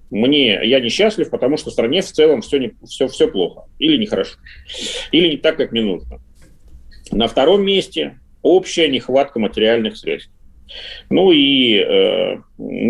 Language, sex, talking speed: Russian, male, 145 wpm